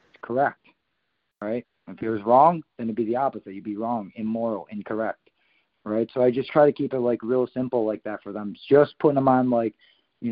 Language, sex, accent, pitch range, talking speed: English, male, American, 110-125 Hz, 220 wpm